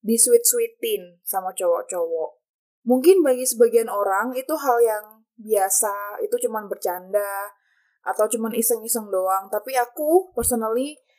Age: 20-39